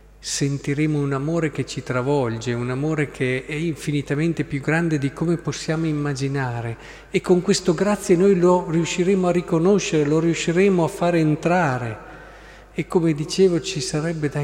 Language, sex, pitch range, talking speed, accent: Italian, male, 130-160 Hz, 155 wpm, native